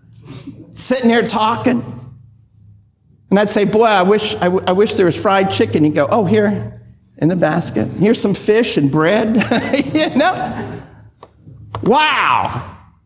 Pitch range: 225-290 Hz